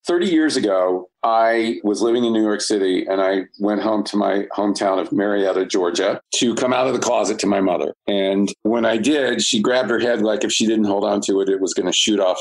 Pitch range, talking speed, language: 100-150 Hz, 245 wpm, English